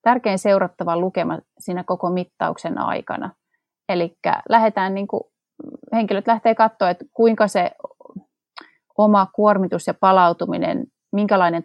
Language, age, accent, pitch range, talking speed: Finnish, 30-49, native, 180-230 Hz, 105 wpm